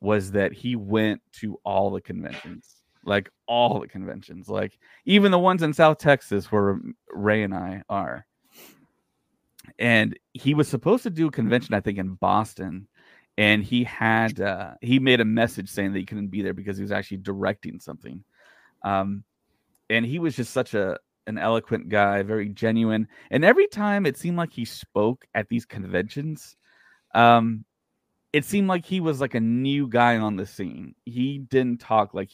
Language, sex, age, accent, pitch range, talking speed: English, male, 30-49, American, 100-130 Hz, 180 wpm